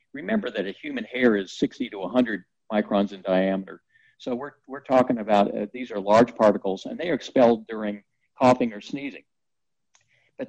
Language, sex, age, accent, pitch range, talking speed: English, male, 60-79, American, 105-125 Hz, 175 wpm